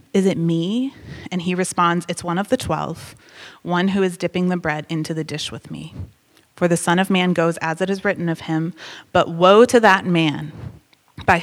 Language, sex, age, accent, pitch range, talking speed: English, female, 30-49, American, 160-190 Hz, 210 wpm